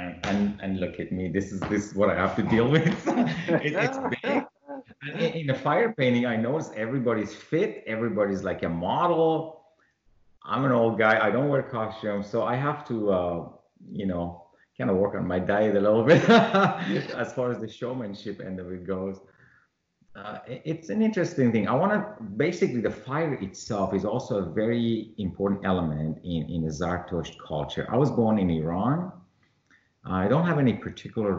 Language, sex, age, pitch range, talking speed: English, male, 30-49, 95-130 Hz, 185 wpm